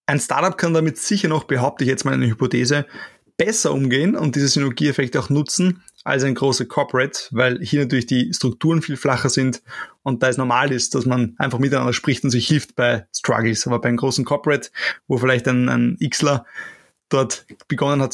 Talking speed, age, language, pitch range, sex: 200 wpm, 20-39, German, 125-150 Hz, male